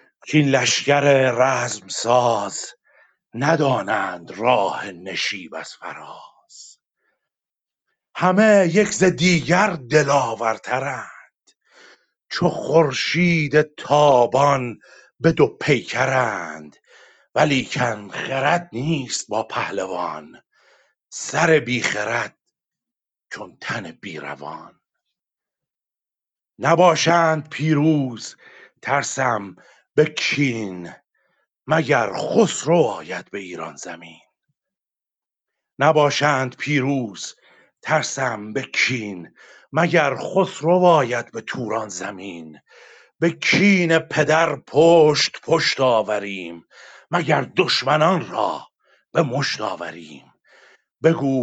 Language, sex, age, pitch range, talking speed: Persian, male, 50-69, 120-160 Hz, 80 wpm